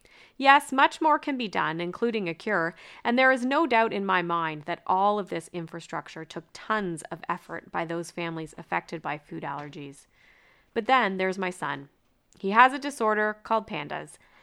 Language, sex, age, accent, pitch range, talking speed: English, female, 30-49, American, 170-225 Hz, 185 wpm